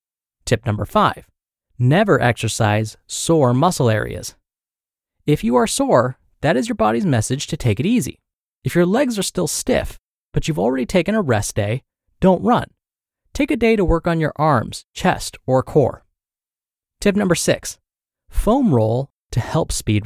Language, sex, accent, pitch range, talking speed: English, male, American, 115-180 Hz, 165 wpm